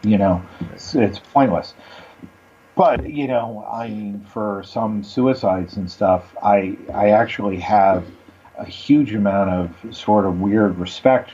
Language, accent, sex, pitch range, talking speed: English, American, male, 105-135 Hz, 140 wpm